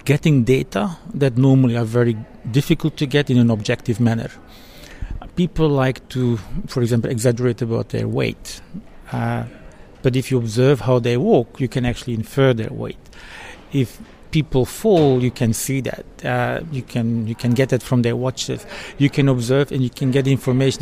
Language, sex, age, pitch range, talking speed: English, male, 50-69, 120-145 Hz, 175 wpm